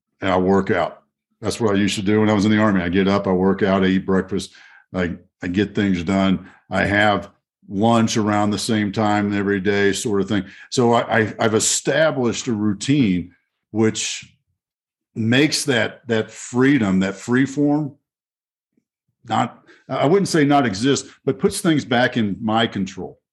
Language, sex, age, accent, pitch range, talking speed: English, male, 50-69, American, 105-140 Hz, 175 wpm